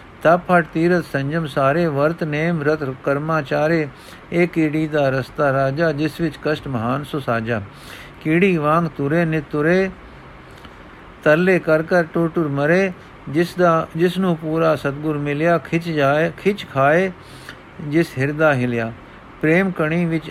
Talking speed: 135 wpm